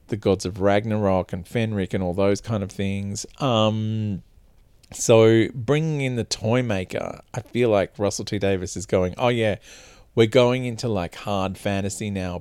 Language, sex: English, male